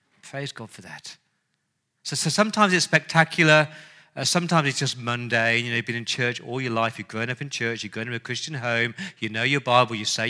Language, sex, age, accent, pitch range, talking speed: English, male, 40-59, British, 125-160 Hz, 225 wpm